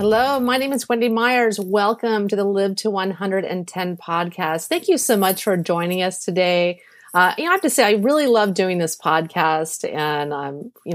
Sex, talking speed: female, 205 wpm